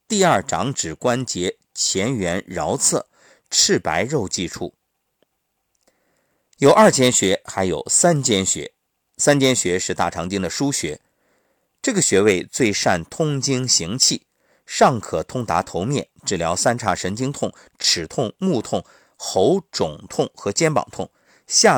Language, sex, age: Chinese, male, 50-69